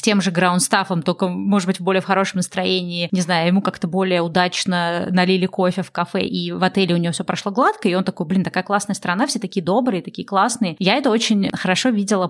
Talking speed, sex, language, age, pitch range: 225 wpm, female, Russian, 20-39, 175-205 Hz